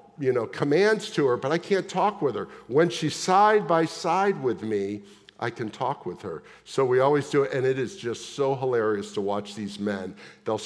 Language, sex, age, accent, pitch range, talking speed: English, male, 50-69, American, 110-165 Hz, 220 wpm